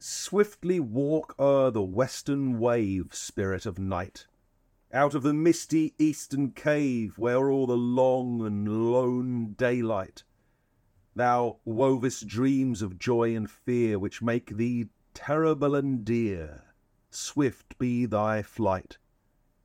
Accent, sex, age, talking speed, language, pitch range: British, male, 40-59, 120 wpm, English, 110-140 Hz